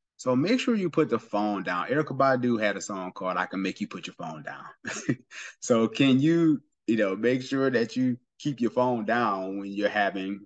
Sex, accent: male, American